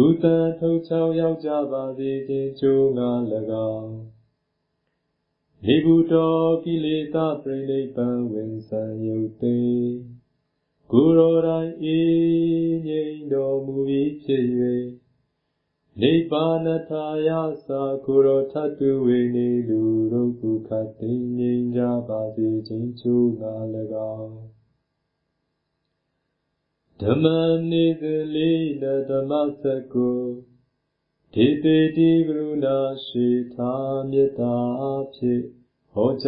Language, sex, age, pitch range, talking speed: Vietnamese, male, 30-49, 120-155 Hz, 60 wpm